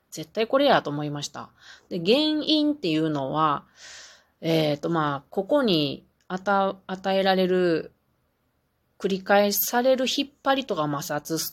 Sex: female